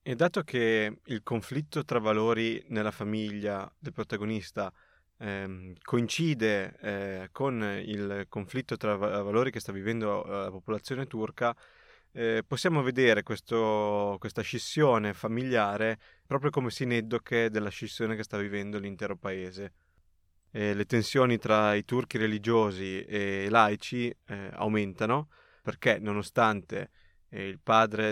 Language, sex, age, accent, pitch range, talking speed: Italian, male, 20-39, native, 100-115 Hz, 125 wpm